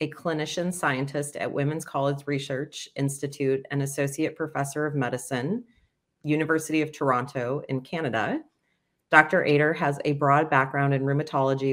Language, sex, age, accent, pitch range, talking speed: English, female, 30-49, American, 135-150 Hz, 135 wpm